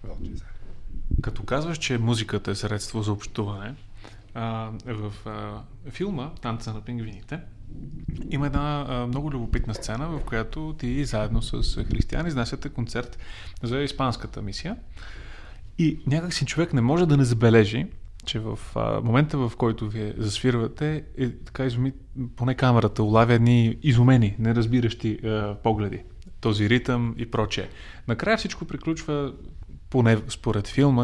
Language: Bulgarian